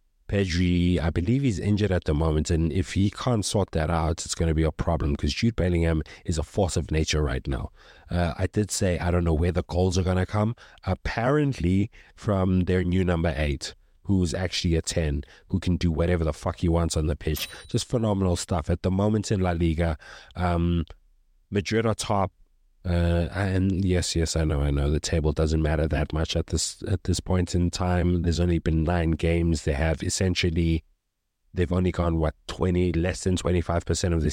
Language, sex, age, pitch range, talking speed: English, male, 30-49, 80-95 Hz, 210 wpm